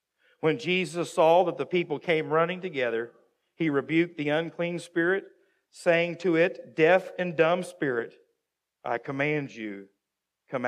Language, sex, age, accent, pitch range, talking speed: English, male, 50-69, American, 130-170 Hz, 140 wpm